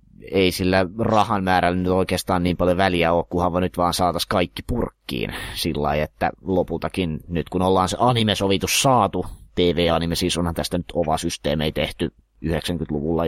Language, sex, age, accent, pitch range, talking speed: Finnish, male, 30-49, native, 80-90 Hz, 155 wpm